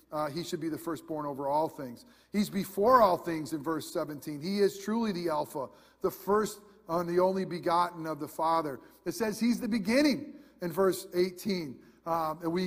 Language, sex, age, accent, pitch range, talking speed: English, male, 40-59, American, 165-215 Hz, 195 wpm